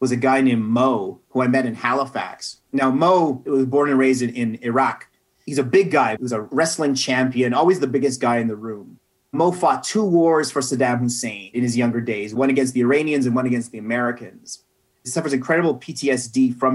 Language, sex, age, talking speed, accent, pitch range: English, male, 30-49, 215 wpm, American, 125-160 Hz